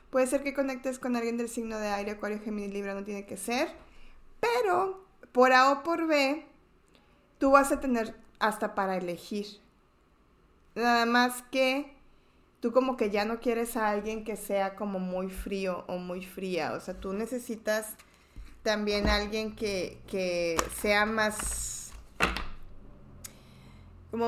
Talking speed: 150 wpm